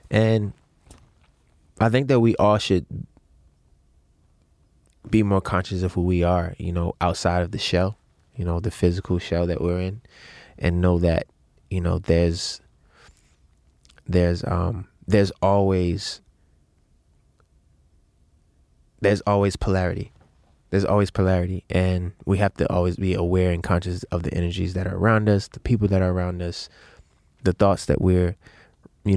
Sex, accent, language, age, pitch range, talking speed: male, American, English, 20-39, 85-100 Hz, 145 wpm